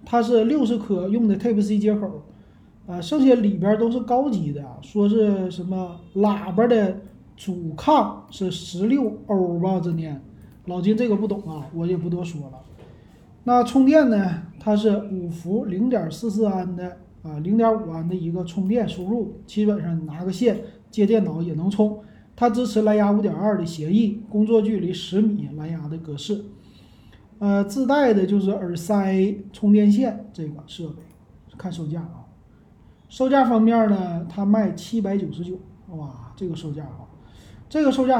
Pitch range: 170-220 Hz